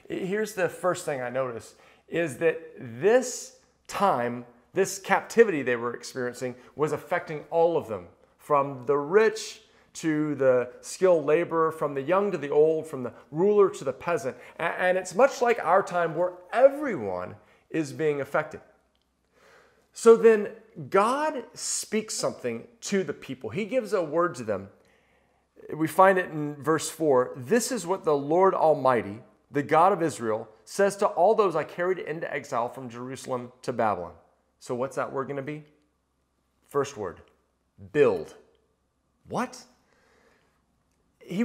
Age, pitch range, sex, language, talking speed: 40-59, 145-210 Hz, male, English, 150 wpm